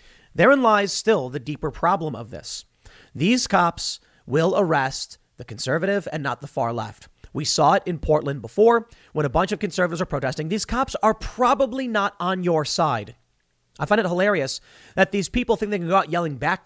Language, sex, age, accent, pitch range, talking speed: English, male, 30-49, American, 135-205 Hz, 195 wpm